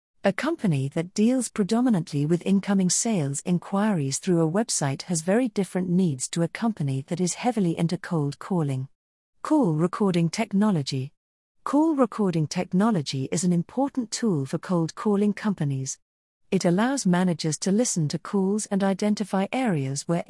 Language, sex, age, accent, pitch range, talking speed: English, female, 40-59, British, 160-215 Hz, 150 wpm